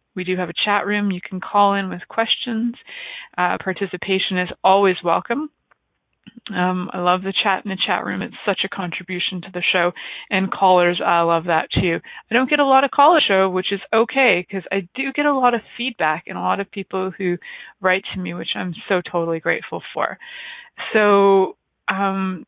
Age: 20-39